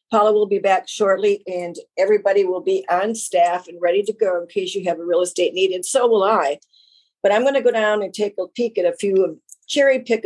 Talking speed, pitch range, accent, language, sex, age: 245 wpm, 175-220 Hz, American, English, female, 50-69